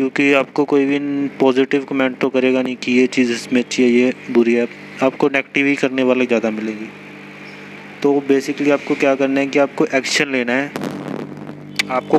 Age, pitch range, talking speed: 20-39, 100-130 Hz, 180 wpm